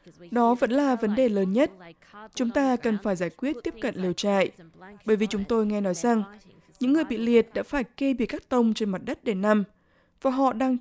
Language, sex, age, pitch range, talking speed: Vietnamese, female, 20-39, 190-250 Hz, 235 wpm